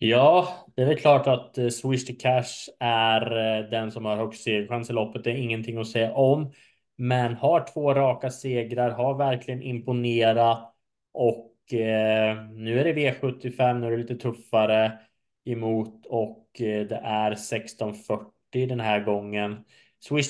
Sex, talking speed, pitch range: male, 150 wpm, 110-125 Hz